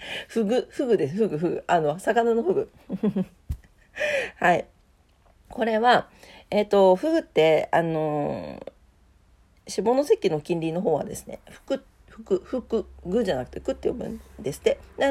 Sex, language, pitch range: female, Japanese, 160-230 Hz